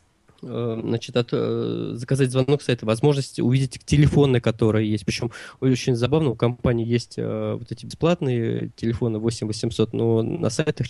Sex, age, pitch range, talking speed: male, 20-39, 115-135 Hz, 150 wpm